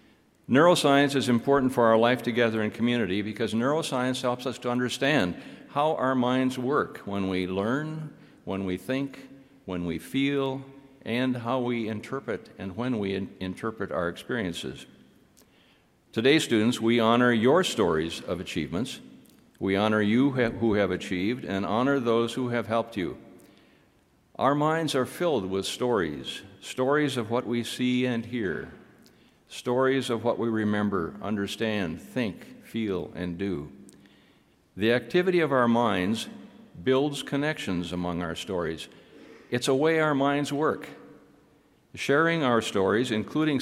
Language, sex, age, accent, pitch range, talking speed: English, male, 60-79, American, 100-135 Hz, 140 wpm